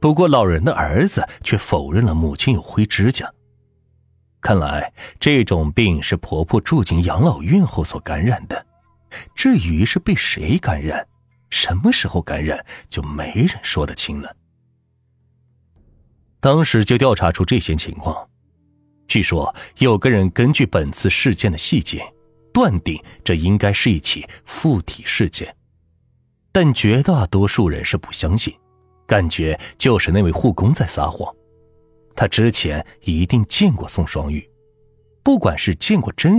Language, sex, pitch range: Chinese, male, 80-125 Hz